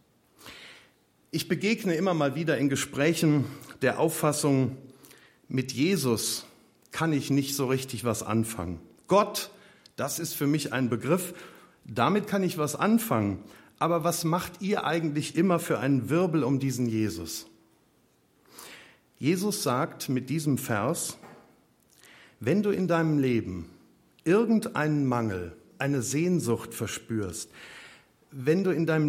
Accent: German